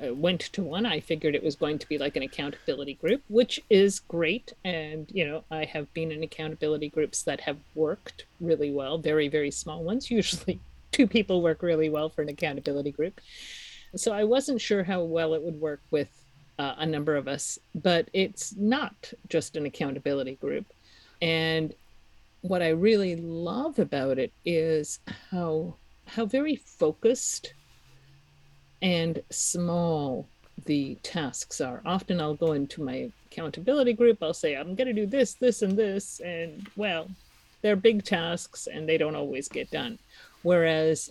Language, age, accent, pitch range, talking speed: English, 50-69, American, 150-200 Hz, 165 wpm